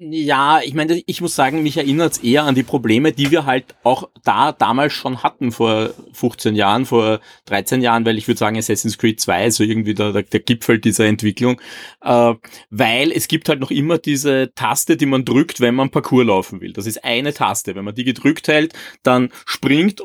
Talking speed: 205 wpm